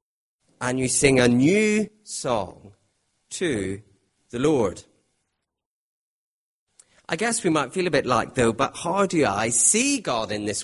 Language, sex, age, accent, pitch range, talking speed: English, male, 40-59, British, 105-135 Hz, 145 wpm